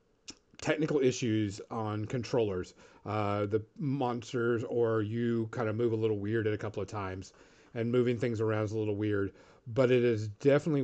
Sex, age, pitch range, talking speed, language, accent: male, 40-59, 115-150 Hz, 175 wpm, English, American